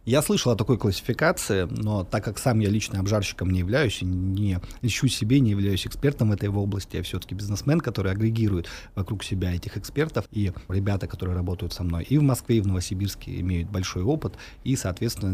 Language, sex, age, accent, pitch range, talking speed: Russian, male, 30-49, native, 100-125 Hz, 190 wpm